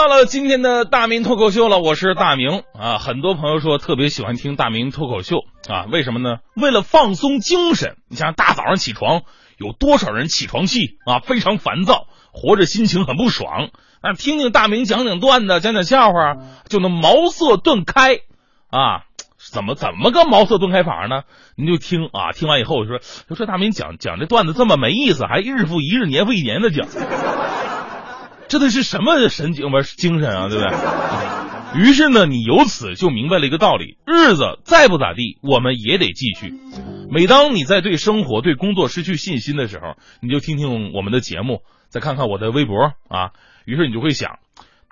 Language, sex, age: Chinese, male, 30-49